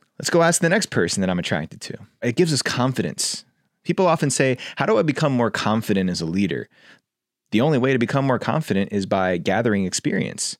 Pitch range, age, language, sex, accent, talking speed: 105-140 Hz, 20-39, English, male, American, 210 wpm